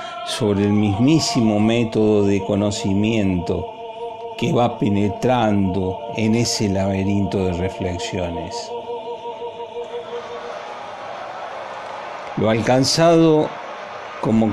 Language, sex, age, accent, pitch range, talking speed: Spanish, male, 50-69, Argentinian, 105-135 Hz, 70 wpm